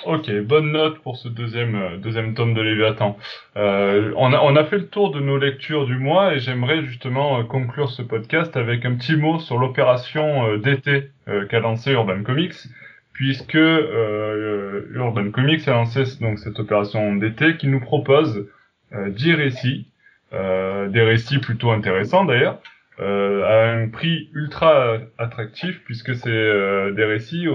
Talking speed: 165 wpm